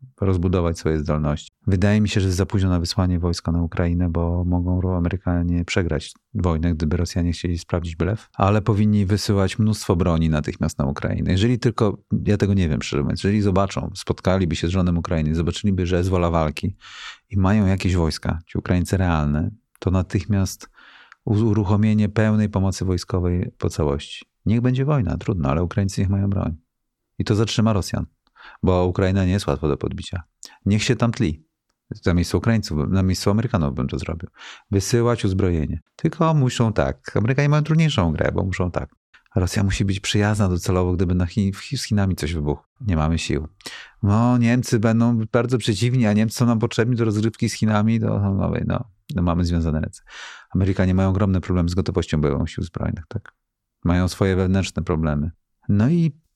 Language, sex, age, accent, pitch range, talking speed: Polish, male, 40-59, native, 85-110 Hz, 175 wpm